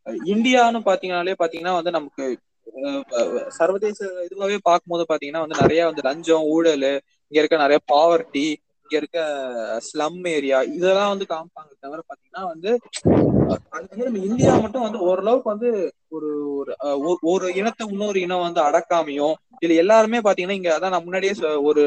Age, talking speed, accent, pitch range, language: 20-39, 50 wpm, native, 150-205 Hz, Tamil